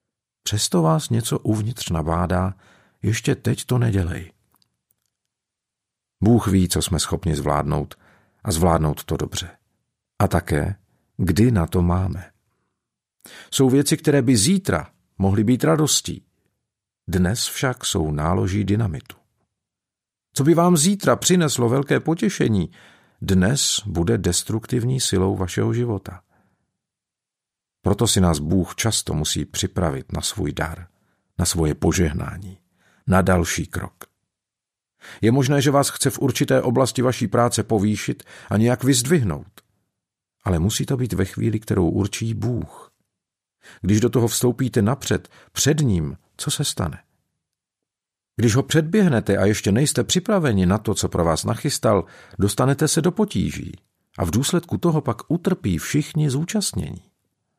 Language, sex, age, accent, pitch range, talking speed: Czech, male, 50-69, native, 95-130 Hz, 130 wpm